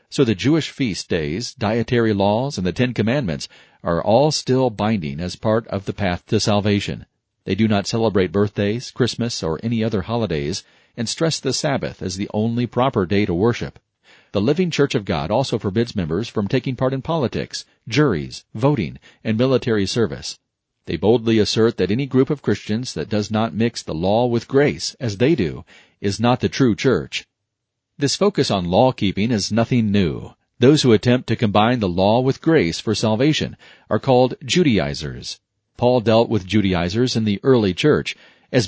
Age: 40-59